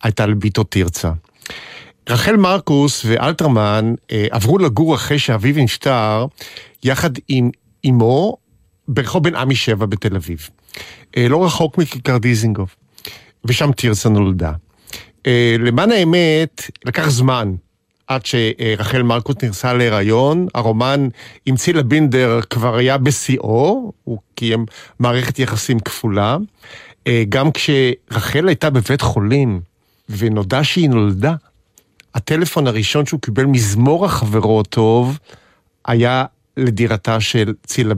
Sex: male